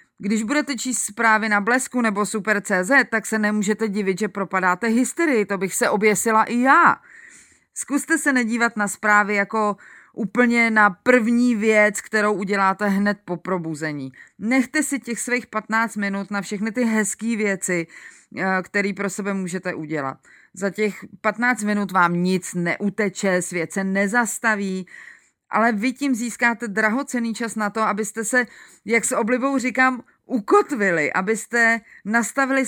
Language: Czech